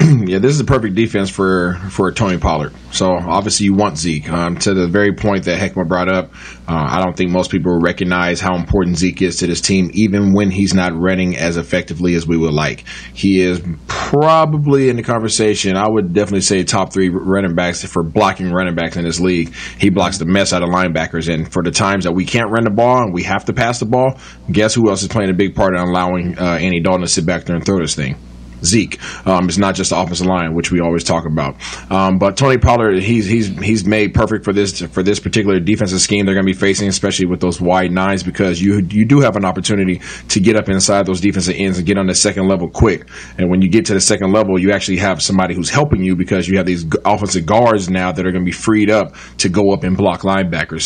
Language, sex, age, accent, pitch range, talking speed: English, male, 30-49, American, 90-105 Hz, 250 wpm